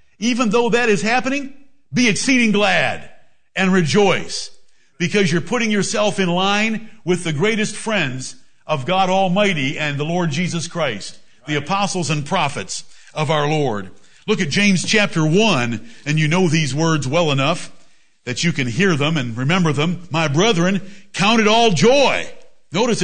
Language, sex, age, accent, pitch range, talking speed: English, male, 60-79, American, 175-220 Hz, 160 wpm